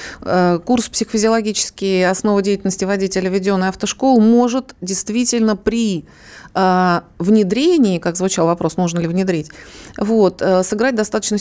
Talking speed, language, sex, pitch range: 105 wpm, Russian, female, 185-225 Hz